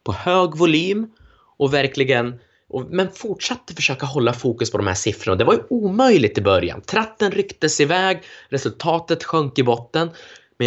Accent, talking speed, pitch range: native, 165 wpm, 130-180 Hz